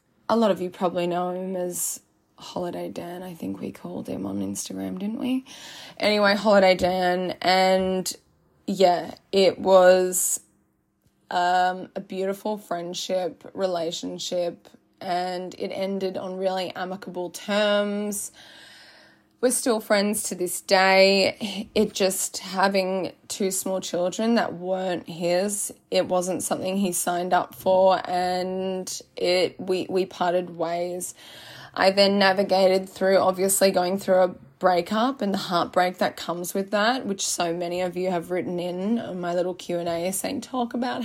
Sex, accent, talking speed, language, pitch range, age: female, Australian, 145 wpm, English, 180-200 Hz, 20-39